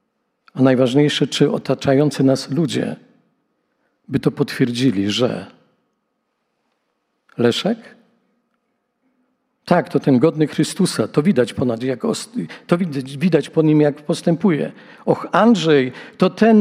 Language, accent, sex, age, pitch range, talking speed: Polish, native, male, 50-69, 145-225 Hz, 105 wpm